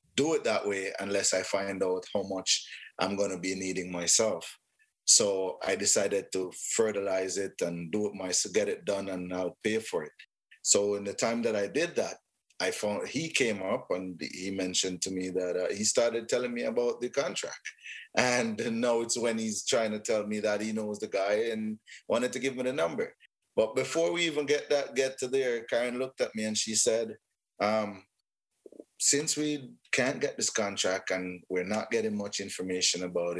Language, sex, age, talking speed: English, male, 30-49, 200 wpm